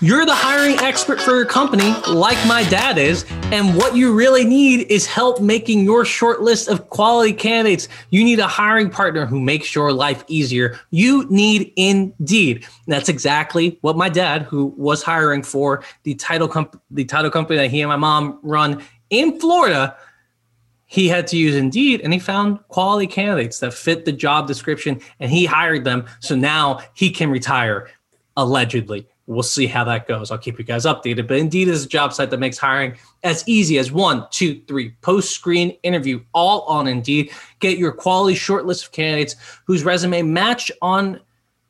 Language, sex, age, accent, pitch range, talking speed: English, male, 20-39, American, 135-190 Hz, 180 wpm